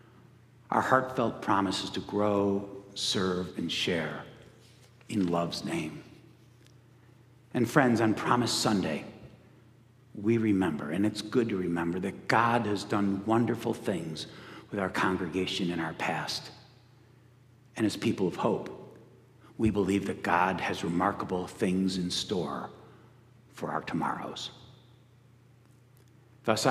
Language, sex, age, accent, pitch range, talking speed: English, male, 60-79, American, 105-125 Hz, 120 wpm